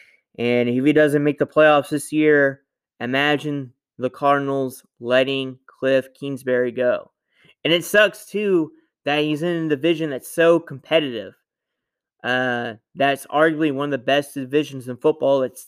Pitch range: 130-150 Hz